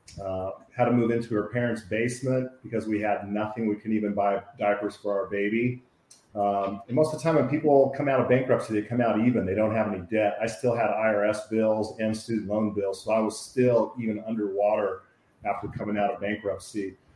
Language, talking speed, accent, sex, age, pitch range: English, 215 wpm, American, male, 40-59, 105-120 Hz